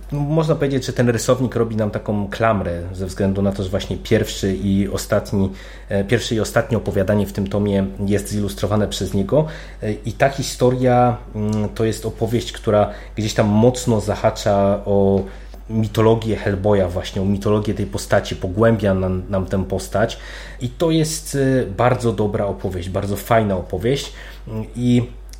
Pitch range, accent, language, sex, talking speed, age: 100-120 Hz, native, Polish, male, 150 wpm, 30-49